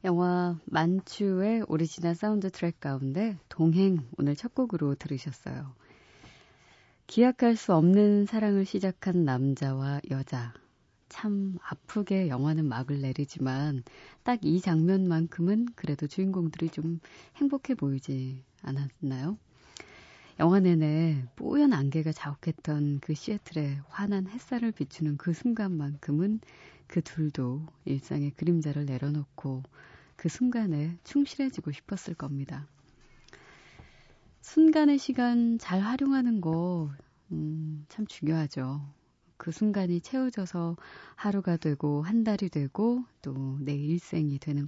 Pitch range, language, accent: 145-200 Hz, Korean, native